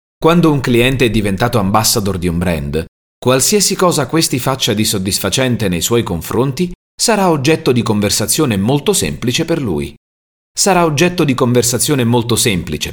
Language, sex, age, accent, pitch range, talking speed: Italian, male, 30-49, native, 95-140 Hz, 150 wpm